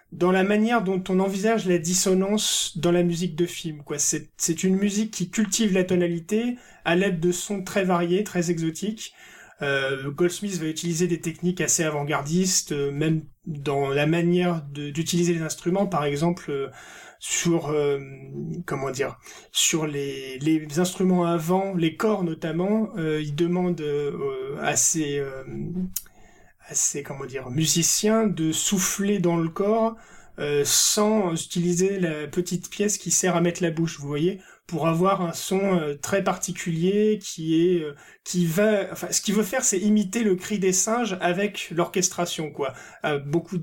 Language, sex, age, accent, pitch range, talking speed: French, male, 30-49, French, 155-190 Hz, 165 wpm